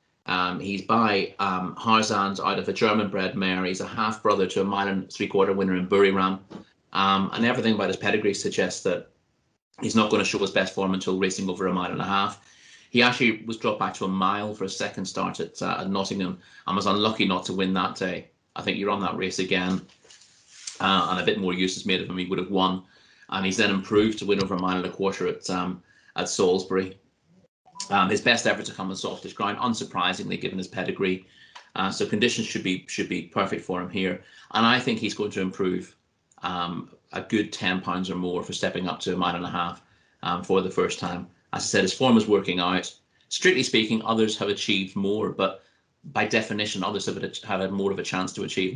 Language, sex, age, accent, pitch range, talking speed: English, male, 30-49, British, 95-100 Hz, 230 wpm